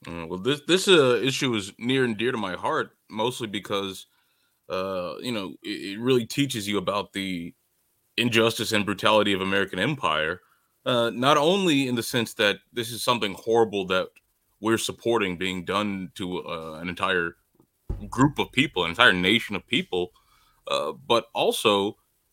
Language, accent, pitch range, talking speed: English, American, 100-130 Hz, 165 wpm